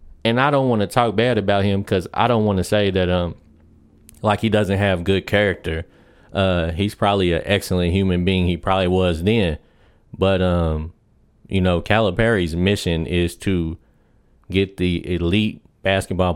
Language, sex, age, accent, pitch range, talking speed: English, male, 30-49, American, 85-100 Hz, 170 wpm